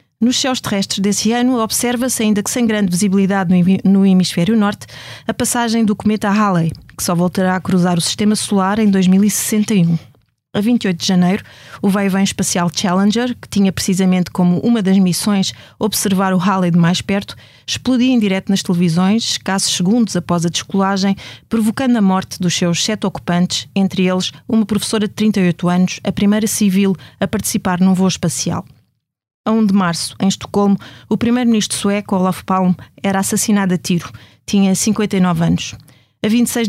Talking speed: 165 wpm